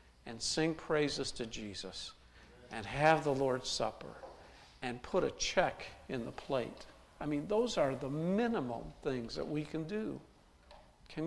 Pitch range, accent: 120-155 Hz, American